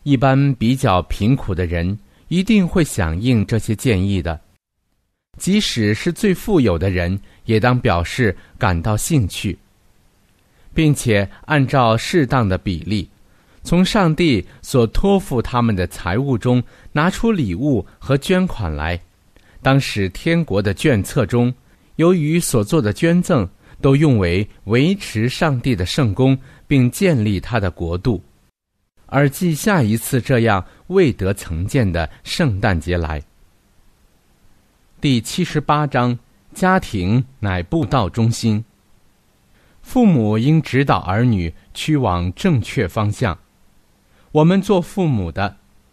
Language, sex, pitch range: Chinese, male, 95-140 Hz